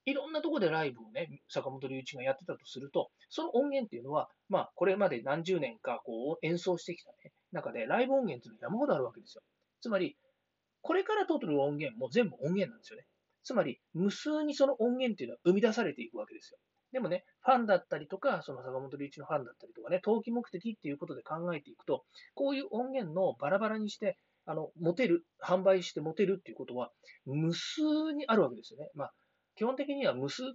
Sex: male